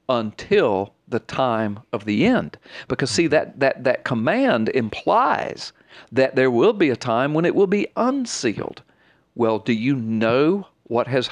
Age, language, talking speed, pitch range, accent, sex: 50-69, English, 160 wpm, 115-160 Hz, American, male